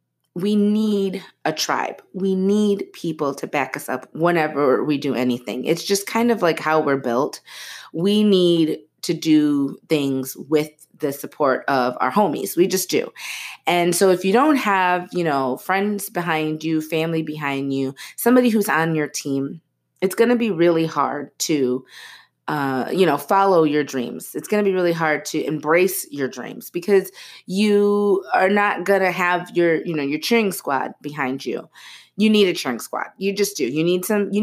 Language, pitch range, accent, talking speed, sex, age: English, 145-195 Hz, American, 185 wpm, female, 30-49